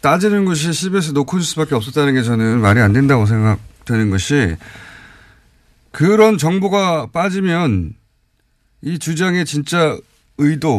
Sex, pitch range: male, 115-175 Hz